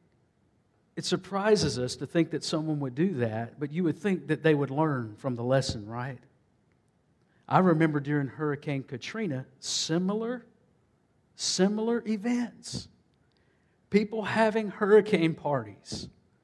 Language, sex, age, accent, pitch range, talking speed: English, male, 50-69, American, 140-185 Hz, 125 wpm